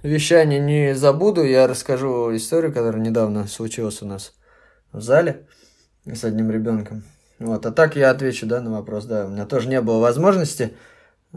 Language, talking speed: Russian, 165 wpm